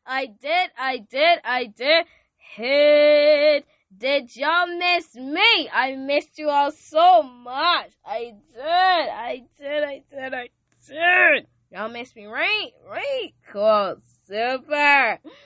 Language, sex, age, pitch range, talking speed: English, female, 10-29, 190-295 Hz, 125 wpm